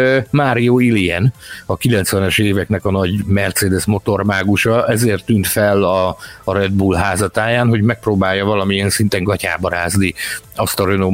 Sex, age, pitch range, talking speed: male, 50-69, 100-130 Hz, 140 wpm